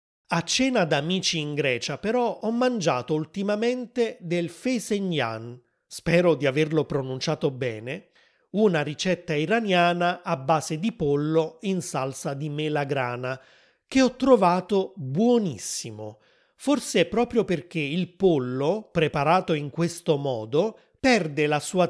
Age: 30-49